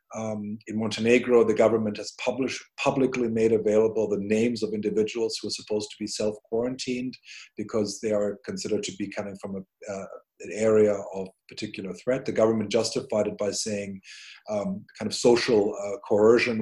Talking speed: 170 wpm